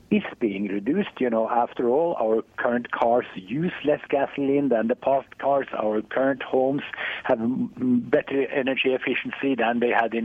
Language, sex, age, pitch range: English, male, 60-79, 120-155 Hz